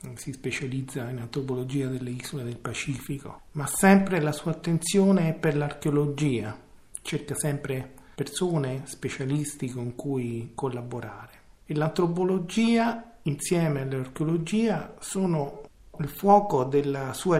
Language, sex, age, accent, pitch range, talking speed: Italian, male, 50-69, native, 135-180 Hz, 110 wpm